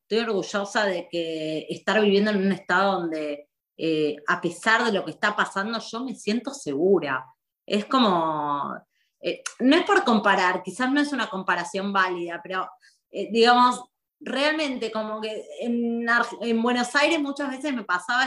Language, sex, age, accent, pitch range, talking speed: Spanish, female, 20-39, Argentinian, 185-265 Hz, 160 wpm